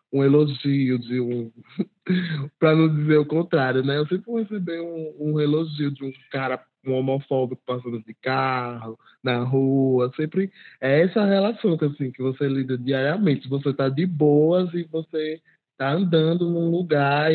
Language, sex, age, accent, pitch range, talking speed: Portuguese, male, 20-39, Brazilian, 125-155 Hz, 160 wpm